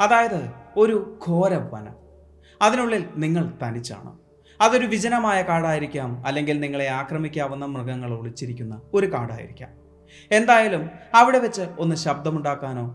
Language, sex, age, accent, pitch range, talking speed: Malayalam, male, 30-49, native, 120-180 Hz, 100 wpm